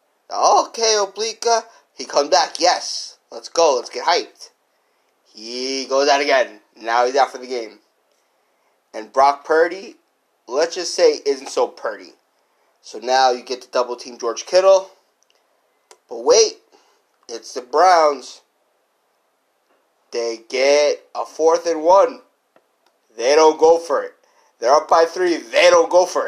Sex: male